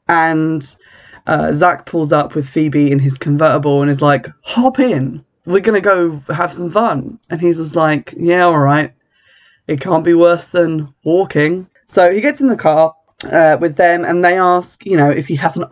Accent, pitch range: British, 150-190 Hz